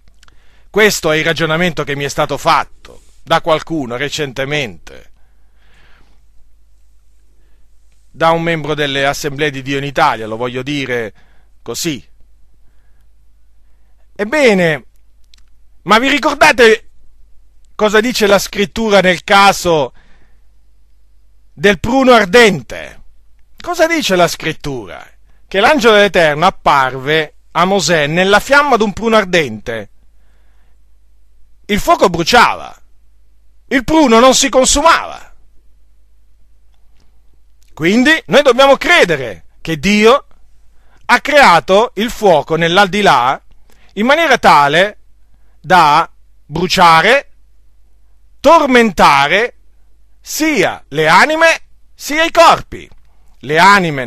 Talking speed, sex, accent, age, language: 95 wpm, male, native, 40-59, Italian